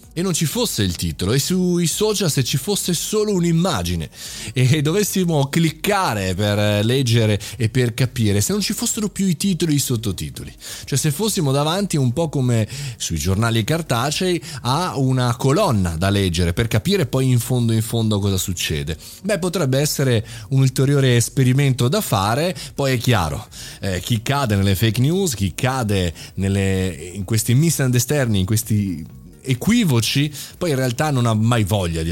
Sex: male